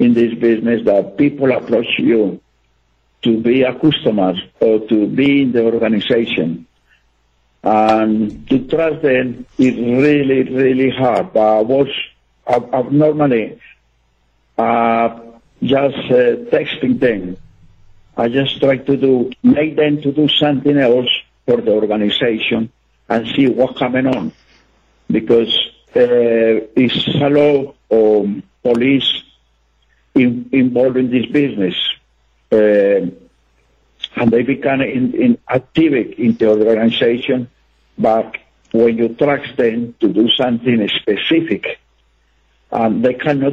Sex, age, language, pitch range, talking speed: male, 60-79, English, 110-135 Hz, 115 wpm